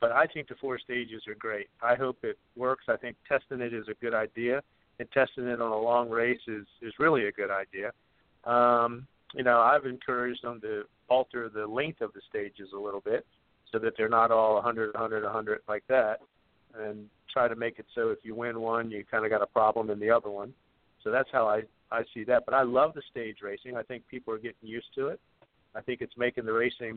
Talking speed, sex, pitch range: 235 wpm, male, 110-125 Hz